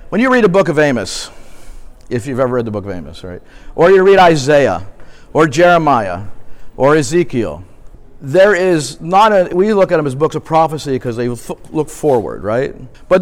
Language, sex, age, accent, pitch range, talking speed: English, male, 50-69, American, 130-170 Hz, 190 wpm